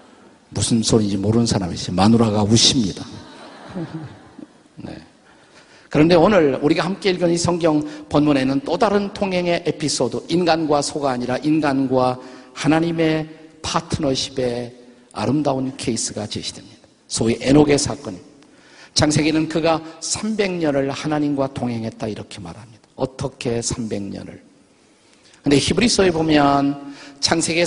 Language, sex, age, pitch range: Korean, male, 50-69, 120-155 Hz